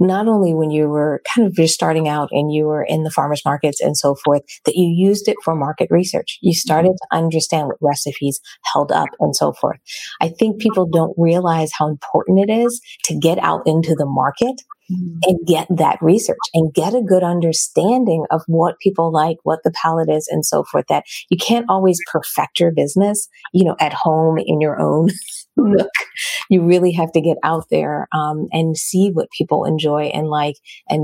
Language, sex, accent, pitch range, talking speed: English, female, American, 160-195 Hz, 200 wpm